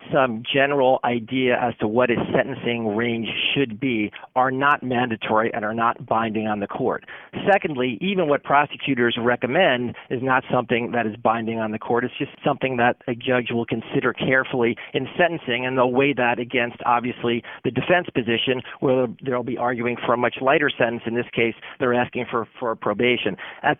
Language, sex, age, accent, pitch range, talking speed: English, male, 40-59, American, 120-140 Hz, 185 wpm